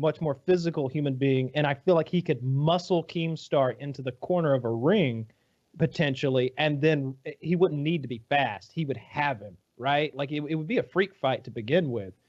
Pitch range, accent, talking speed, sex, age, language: 130-165 Hz, American, 215 wpm, male, 30-49, English